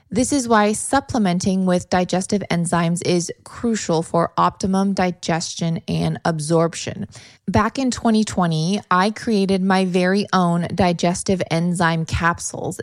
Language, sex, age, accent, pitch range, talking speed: English, female, 20-39, American, 175-215 Hz, 115 wpm